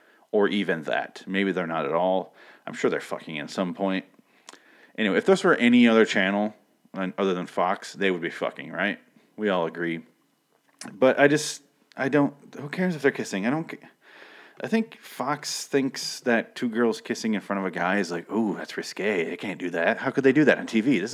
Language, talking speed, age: English, 215 wpm, 30-49